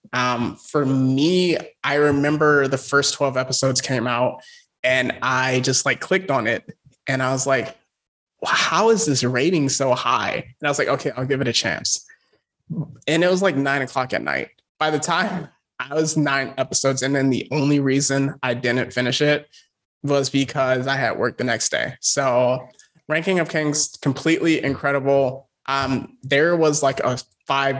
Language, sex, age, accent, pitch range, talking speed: English, male, 20-39, American, 130-150 Hz, 175 wpm